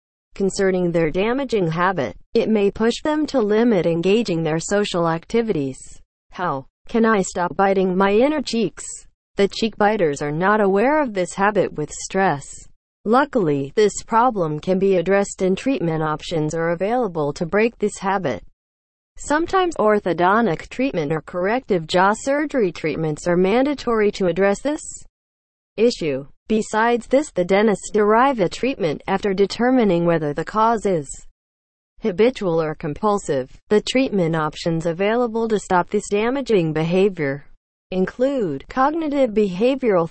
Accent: American